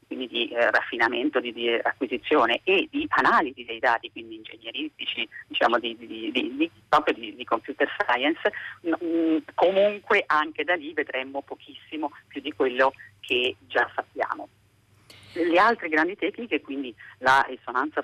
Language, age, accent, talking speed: Italian, 40-59, native, 135 wpm